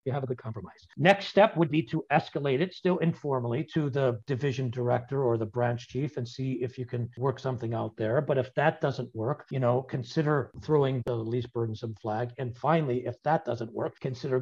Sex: male